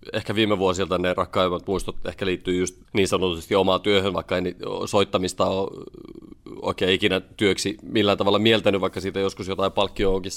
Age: 30-49